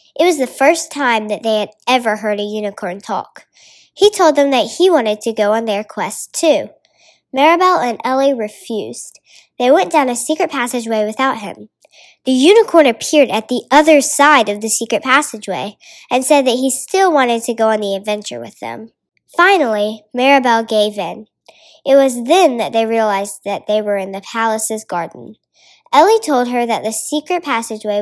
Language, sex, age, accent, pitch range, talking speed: English, male, 10-29, American, 210-285 Hz, 180 wpm